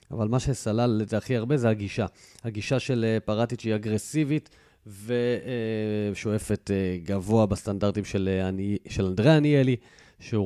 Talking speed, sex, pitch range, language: 110 wpm, male, 100-135 Hz, Hebrew